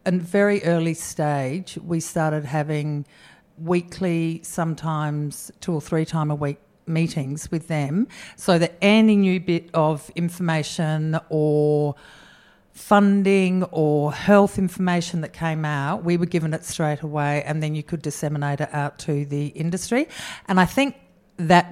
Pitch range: 155-185 Hz